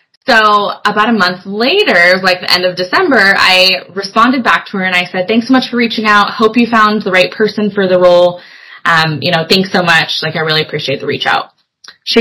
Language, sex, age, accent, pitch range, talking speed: English, female, 20-39, American, 175-225 Hz, 230 wpm